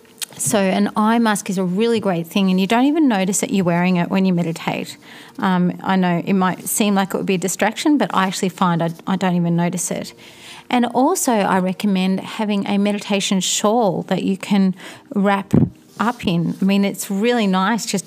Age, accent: 30-49, Australian